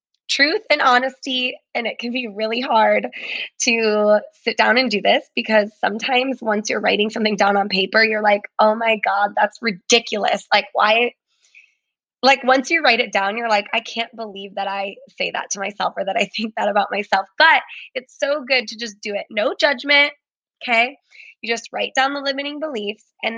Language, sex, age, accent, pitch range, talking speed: English, female, 20-39, American, 215-255 Hz, 195 wpm